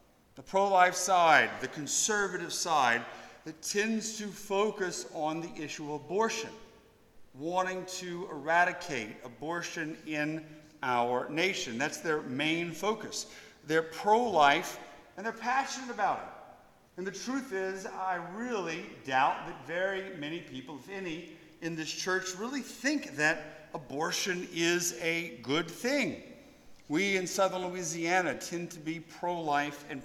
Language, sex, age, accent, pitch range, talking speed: English, male, 50-69, American, 150-190 Hz, 130 wpm